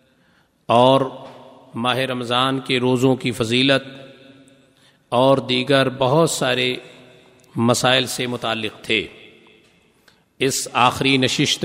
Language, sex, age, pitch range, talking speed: Urdu, male, 50-69, 125-135 Hz, 95 wpm